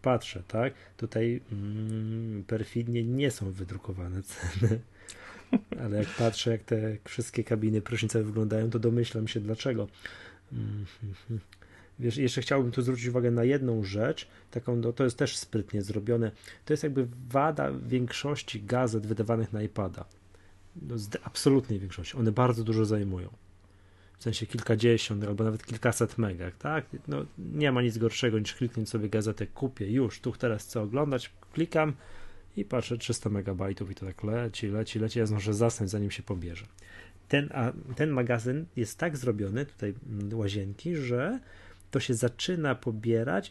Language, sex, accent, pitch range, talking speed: Polish, male, native, 100-125 Hz, 150 wpm